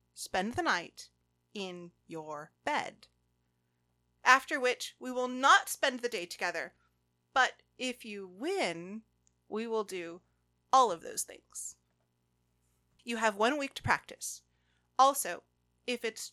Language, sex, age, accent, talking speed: English, female, 30-49, American, 130 wpm